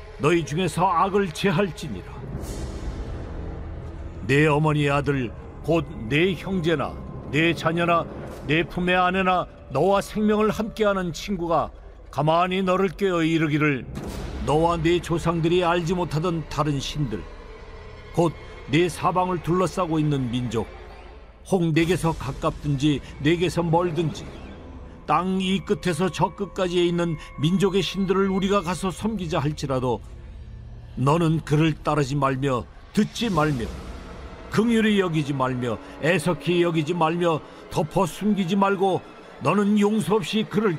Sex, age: male, 40-59